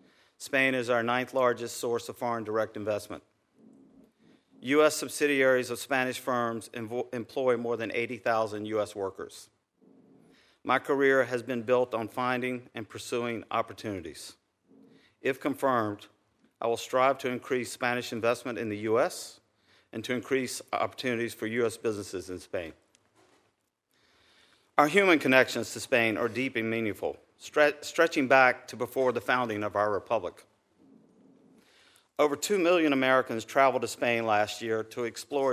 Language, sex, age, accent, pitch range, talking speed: English, male, 50-69, American, 110-130 Hz, 135 wpm